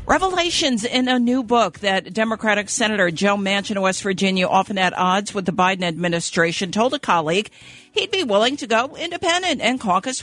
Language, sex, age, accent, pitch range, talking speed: English, female, 50-69, American, 180-220 Hz, 180 wpm